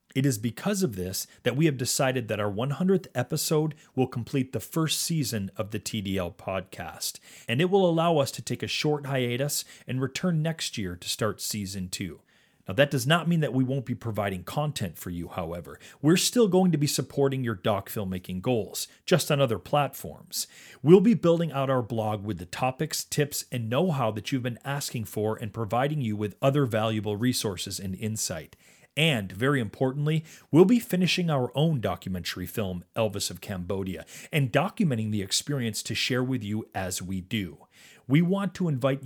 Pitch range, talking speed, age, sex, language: 105-150 Hz, 185 wpm, 40-59, male, English